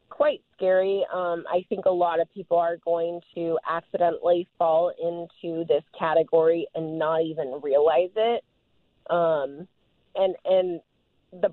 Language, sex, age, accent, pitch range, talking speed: English, female, 30-49, American, 160-180 Hz, 135 wpm